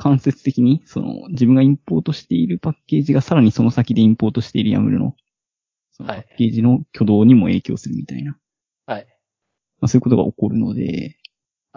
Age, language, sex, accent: 20-39, Japanese, male, native